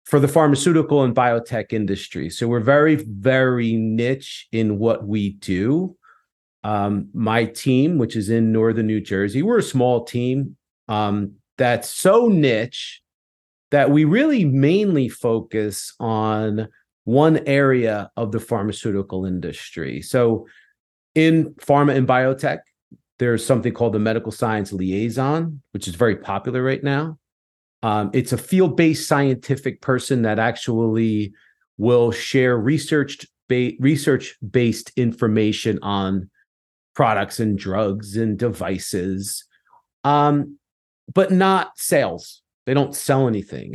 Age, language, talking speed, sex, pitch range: 40-59, English, 120 wpm, male, 110-140 Hz